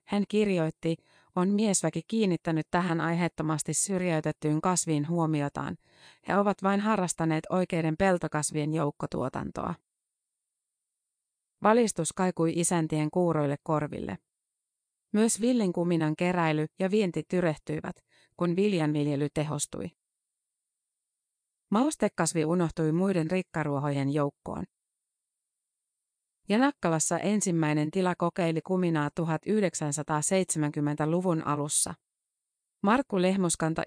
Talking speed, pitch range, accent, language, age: 80 wpm, 155-185 Hz, native, Finnish, 30-49